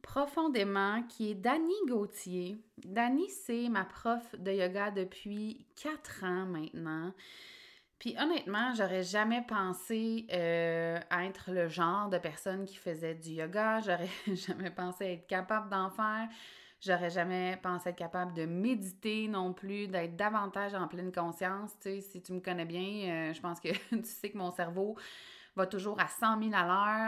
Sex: female